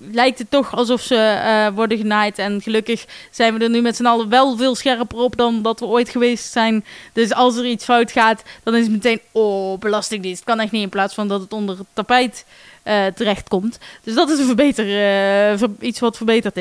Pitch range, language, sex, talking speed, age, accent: 205-245 Hz, Dutch, female, 225 wpm, 20-39, Dutch